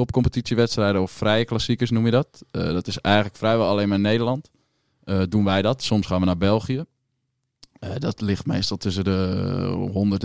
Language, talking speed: Dutch, 185 wpm